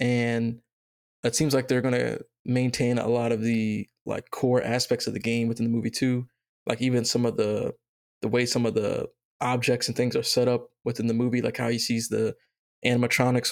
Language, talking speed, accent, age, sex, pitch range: English, 205 wpm, American, 20-39, male, 115-125 Hz